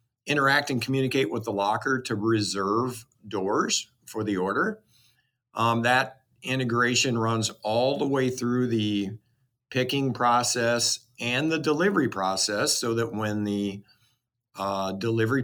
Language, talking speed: English, 130 wpm